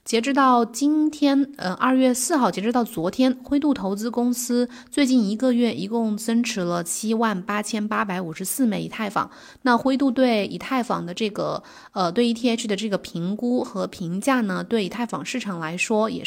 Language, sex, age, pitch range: Chinese, female, 20-39, 190-240 Hz